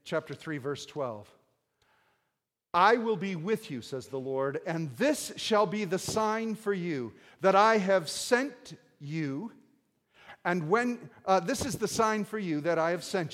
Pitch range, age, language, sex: 175-225 Hz, 50-69, English, male